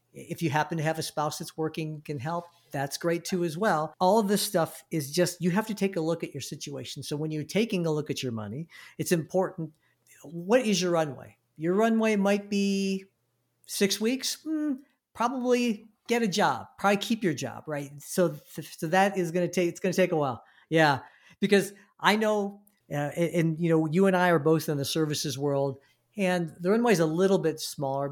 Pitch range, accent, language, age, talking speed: 145-185 Hz, American, English, 50-69, 220 wpm